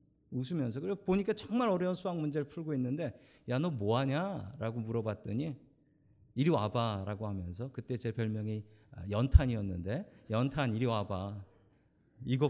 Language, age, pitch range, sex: Korean, 40-59, 105-175 Hz, male